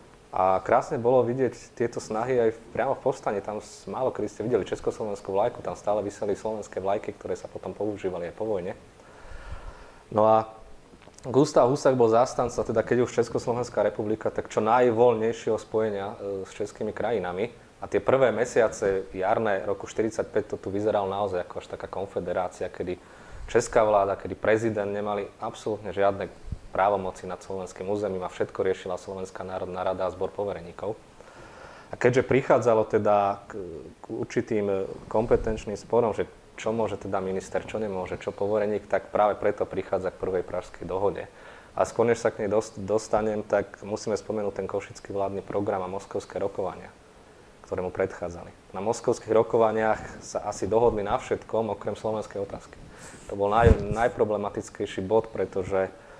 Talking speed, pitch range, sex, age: 160 wpm, 100-115 Hz, male, 20-39